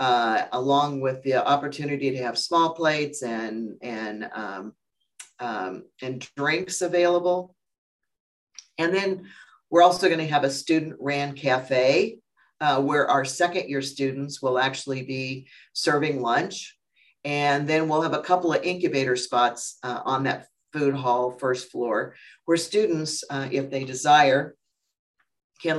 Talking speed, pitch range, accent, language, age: 130 wpm, 130-150 Hz, American, English, 50-69